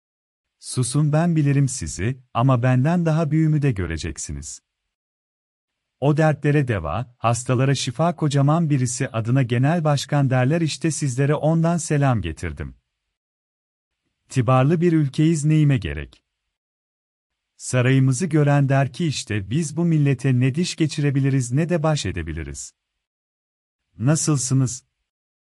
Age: 40-59